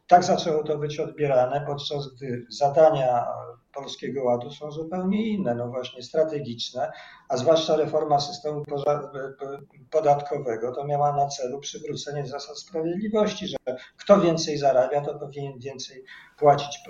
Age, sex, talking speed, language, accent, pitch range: 50-69, male, 130 wpm, Polish, native, 125-160 Hz